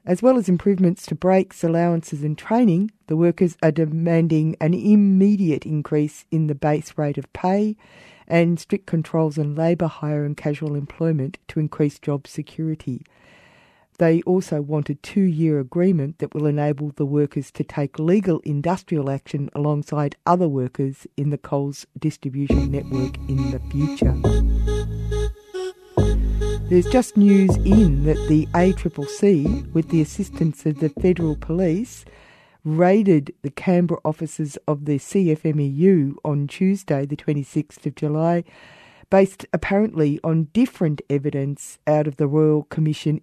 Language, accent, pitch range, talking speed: English, Australian, 145-175 Hz, 140 wpm